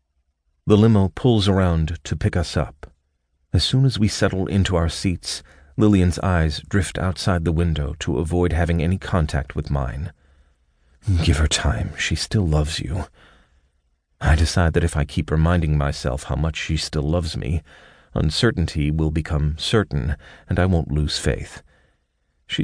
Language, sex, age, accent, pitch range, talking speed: English, male, 40-59, American, 75-90 Hz, 160 wpm